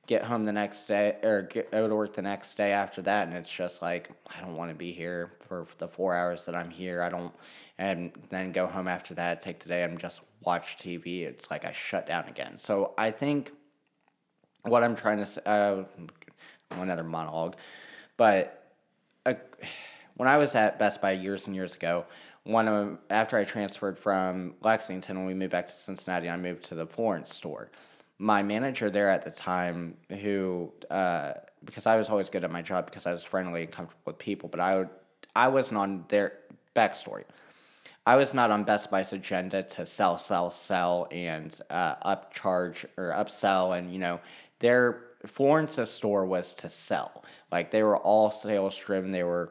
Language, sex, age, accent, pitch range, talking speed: English, male, 20-39, American, 90-105 Hz, 190 wpm